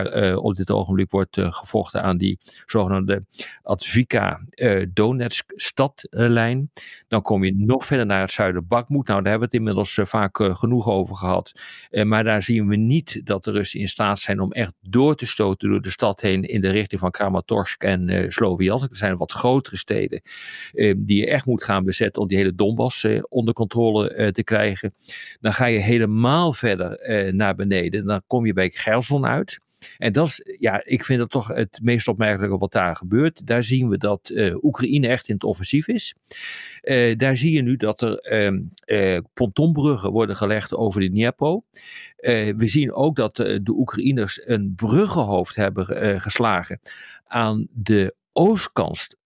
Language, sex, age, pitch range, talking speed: Dutch, male, 50-69, 100-130 Hz, 190 wpm